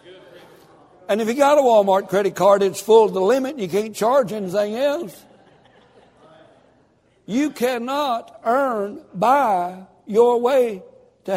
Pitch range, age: 185-255 Hz, 60-79